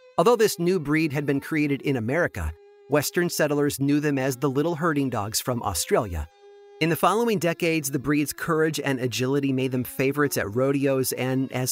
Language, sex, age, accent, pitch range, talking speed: English, male, 30-49, American, 125-165 Hz, 185 wpm